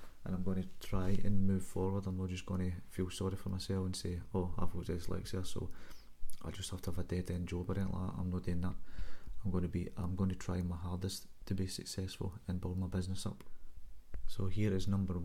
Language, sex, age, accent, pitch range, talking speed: English, male, 20-39, British, 85-95 Hz, 235 wpm